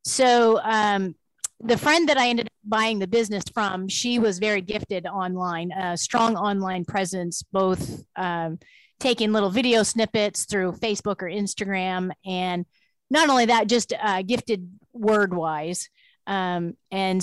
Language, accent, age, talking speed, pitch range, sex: English, American, 30-49, 145 wpm, 180-215 Hz, female